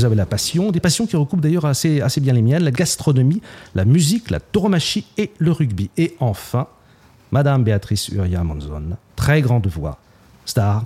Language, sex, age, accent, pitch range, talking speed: French, male, 40-59, French, 115-160 Hz, 175 wpm